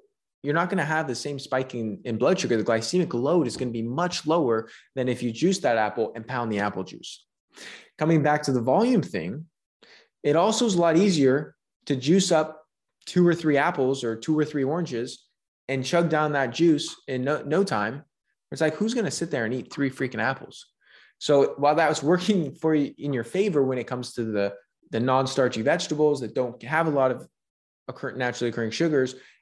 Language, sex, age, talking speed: English, male, 20-39, 210 wpm